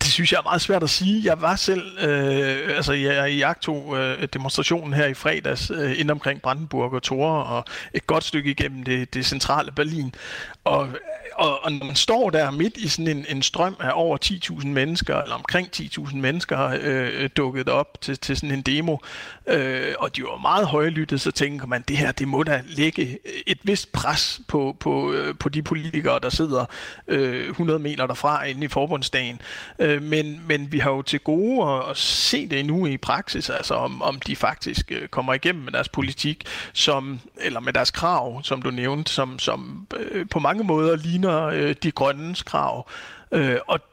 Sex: male